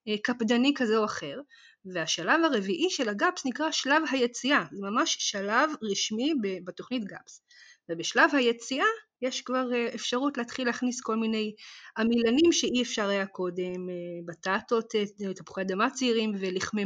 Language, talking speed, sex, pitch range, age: Hebrew, 130 wpm, female, 195-255 Hz, 20-39